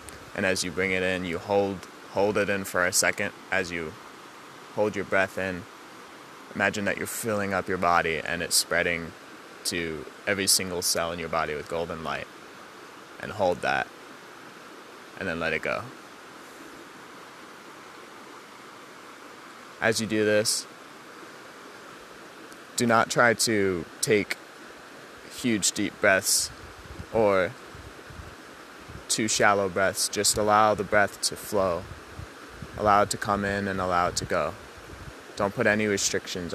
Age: 20-39